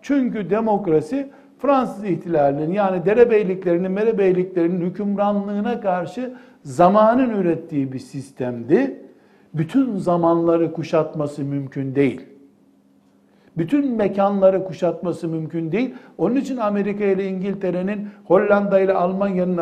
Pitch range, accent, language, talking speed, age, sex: 160-200 Hz, native, Turkish, 95 wpm, 60-79, male